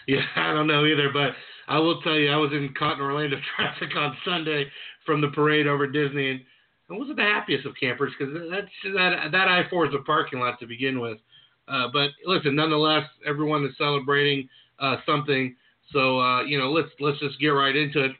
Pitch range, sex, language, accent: 135-155 Hz, male, English, American